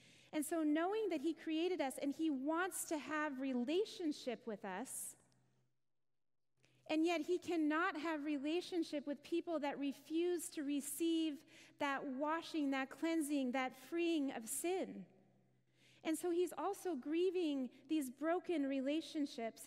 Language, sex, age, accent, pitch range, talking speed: English, female, 30-49, American, 245-320 Hz, 130 wpm